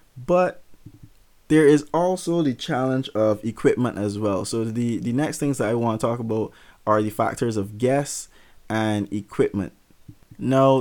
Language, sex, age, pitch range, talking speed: English, male, 20-39, 105-135 Hz, 160 wpm